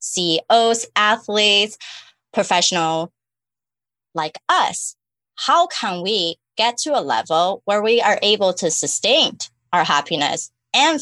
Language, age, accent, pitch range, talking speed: English, 20-39, American, 165-220 Hz, 115 wpm